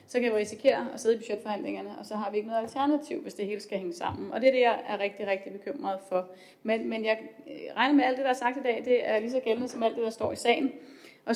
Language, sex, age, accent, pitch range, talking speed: Danish, female, 30-49, native, 200-245 Hz, 295 wpm